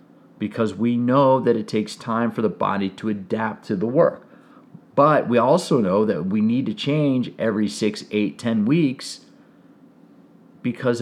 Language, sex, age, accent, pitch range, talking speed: English, male, 40-59, American, 105-145 Hz, 165 wpm